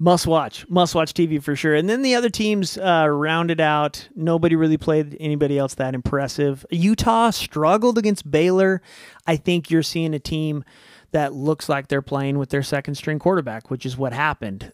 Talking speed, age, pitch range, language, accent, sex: 185 wpm, 30-49, 140-165 Hz, English, American, male